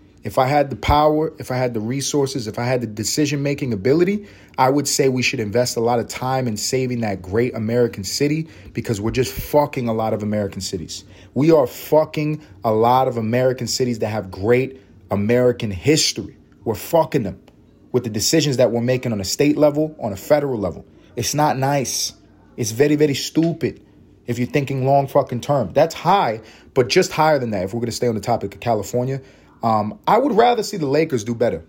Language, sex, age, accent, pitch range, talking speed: English, male, 30-49, American, 115-145 Hz, 210 wpm